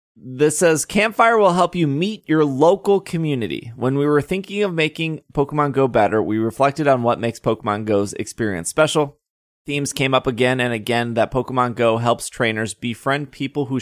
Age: 20-39